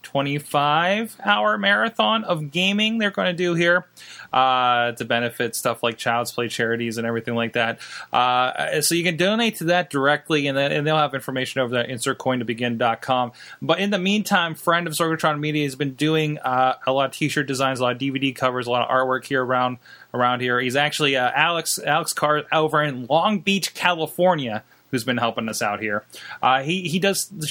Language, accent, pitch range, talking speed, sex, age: English, American, 125-170 Hz, 195 wpm, male, 20-39